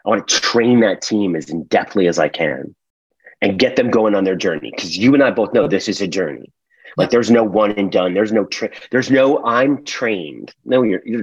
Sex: male